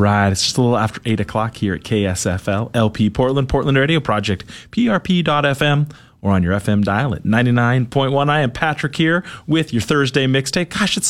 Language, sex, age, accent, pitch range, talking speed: English, male, 30-49, American, 115-165 Hz, 185 wpm